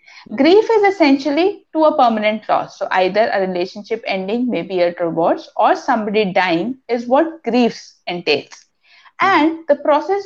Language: English